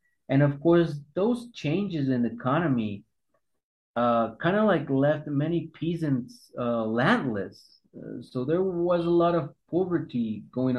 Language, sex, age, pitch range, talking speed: English, male, 30-49, 120-150 Hz, 140 wpm